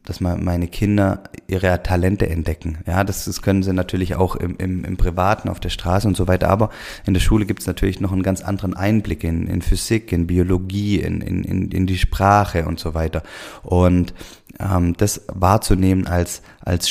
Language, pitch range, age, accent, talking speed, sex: German, 90-100 Hz, 20-39, German, 190 wpm, male